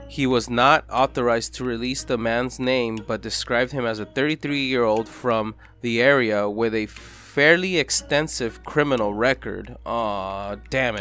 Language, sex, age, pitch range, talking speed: English, male, 20-39, 110-145 Hz, 140 wpm